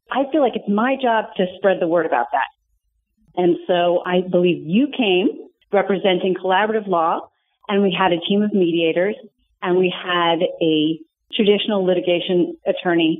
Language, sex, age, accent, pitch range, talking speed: English, female, 40-59, American, 170-205 Hz, 160 wpm